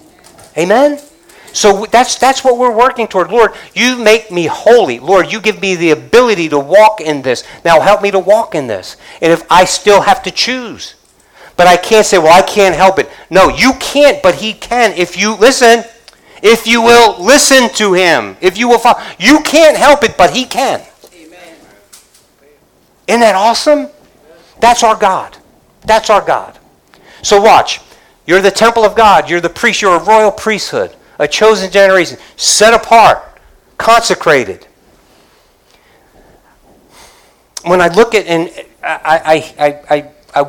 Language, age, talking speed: English, 50-69, 165 wpm